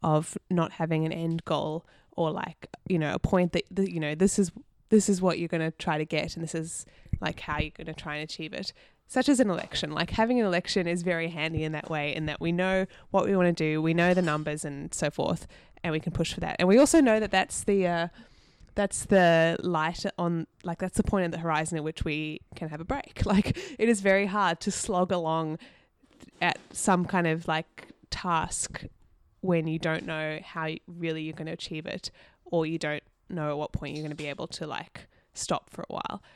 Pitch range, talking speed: 160-195 Hz, 240 wpm